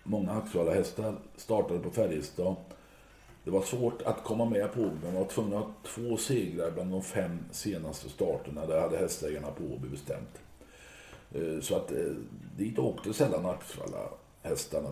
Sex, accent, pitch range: male, native, 70-95 Hz